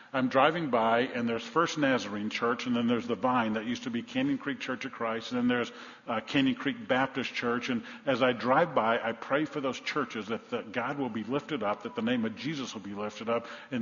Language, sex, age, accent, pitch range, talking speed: English, male, 50-69, American, 120-155 Hz, 245 wpm